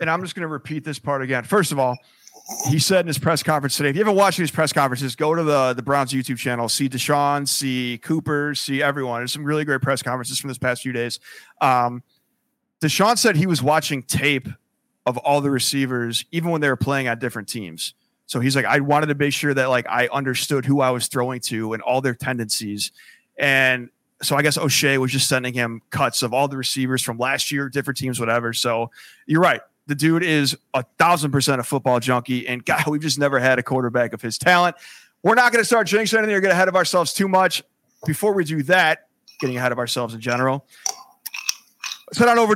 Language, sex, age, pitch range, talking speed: English, male, 30-49, 130-170 Hz, 225 wpm